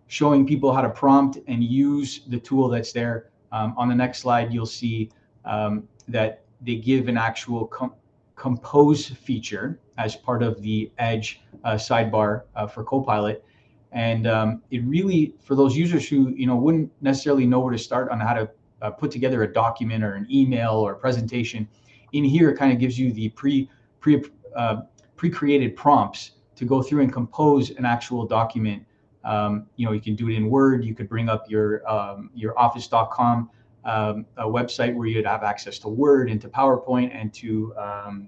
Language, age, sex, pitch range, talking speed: English, 30-49, male, 110-130 Hz, 185 wpm